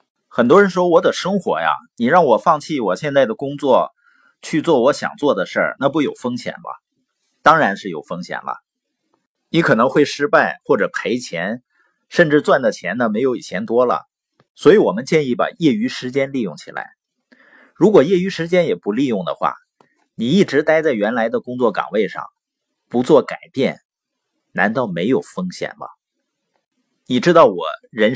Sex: male